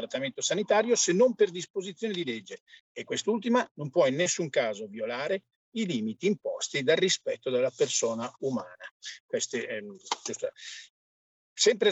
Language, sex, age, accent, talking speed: Italian, male, 50-69, native, 135 wpm